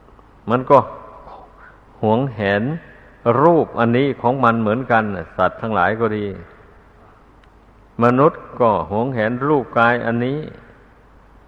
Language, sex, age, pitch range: Thai, male, 60-79, 105-125 Hz